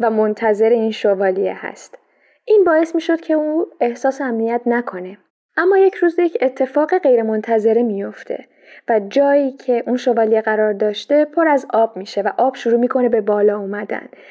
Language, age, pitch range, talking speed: Persian, 10-29, 220-260 Hz, 165 wpm